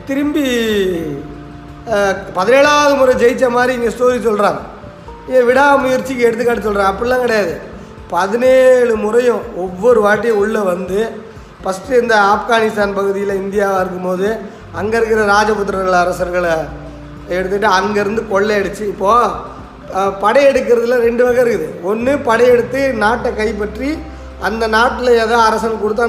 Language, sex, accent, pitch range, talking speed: Tamil, male, native, 210-255 Hz, 115 wpm